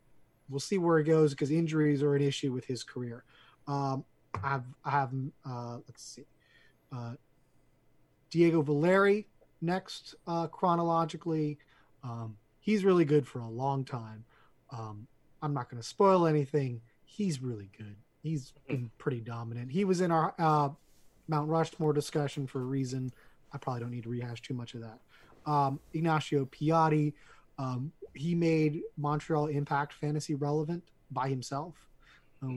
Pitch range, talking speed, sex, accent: 120-150 Hz, 155 wpm, male, American